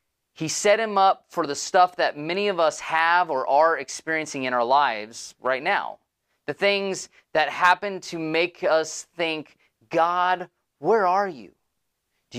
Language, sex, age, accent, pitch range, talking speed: English, male, 30-49, American, 145-205 Hz, 160 wpm